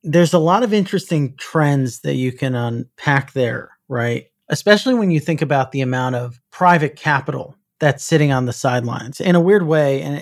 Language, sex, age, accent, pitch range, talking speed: English, male, 40-59, American, 135-170 Hz, 190 wpm